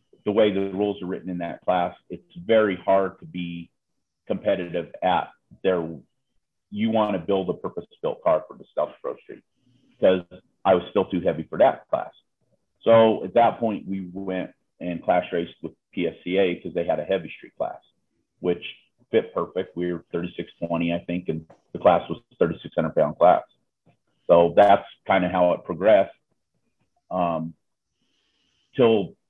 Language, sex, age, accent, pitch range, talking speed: English, male, 40-59, American, 90-110 Hz, 165 wpm